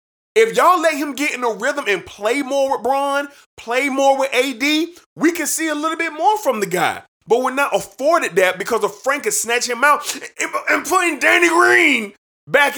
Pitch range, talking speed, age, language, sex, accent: 205-325 Hz, 205 wpm, 30-49, English, male, American